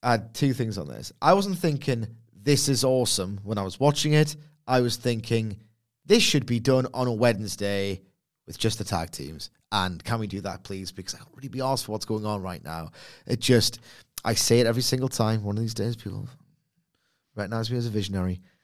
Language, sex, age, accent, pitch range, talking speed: English, male, 30-49, British, 105-135 Hz, 220 wpm